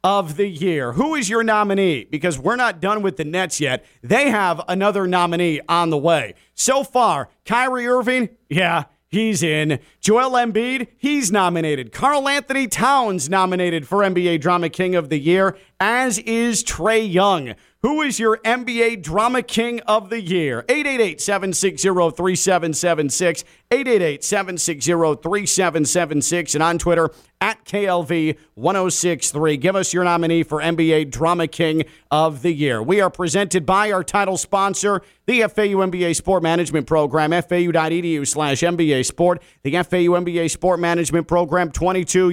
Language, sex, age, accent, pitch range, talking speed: English, male, 40-59, American, 165-200 Hz, 145 wpm